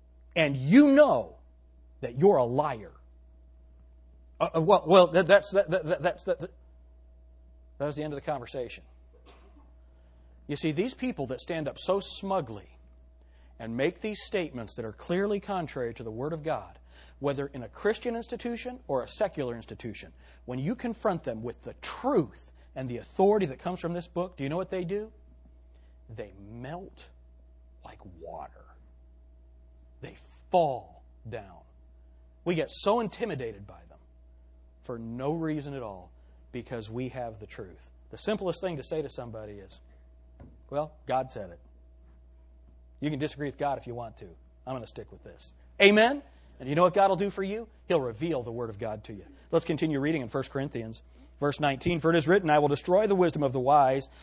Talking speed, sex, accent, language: 175 wpm, male, American, English